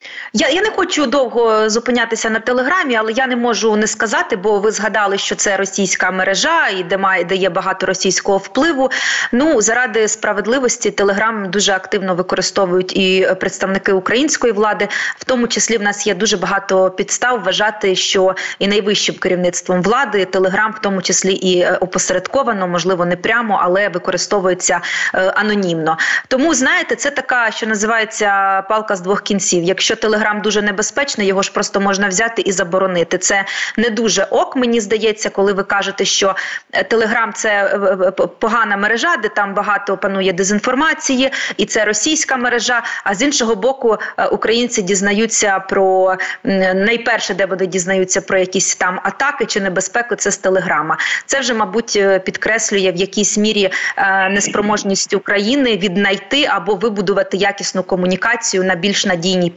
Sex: female